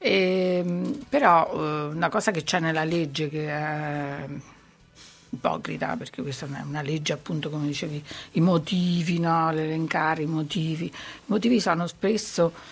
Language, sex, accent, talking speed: Italian, female, native, 140 wpm